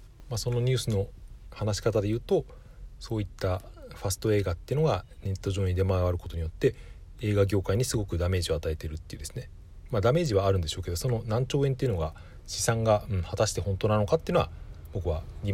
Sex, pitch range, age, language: male, 85-115 Hz, 40-59, Japanese